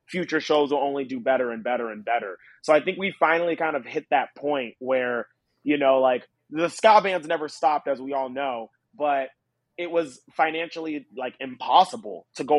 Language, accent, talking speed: English, American, 195 wpm